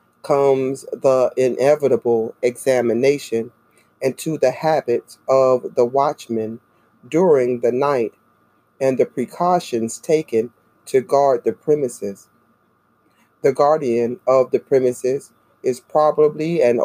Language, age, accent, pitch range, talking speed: English, 40-59, American, 120-150 Hz, 105 wpm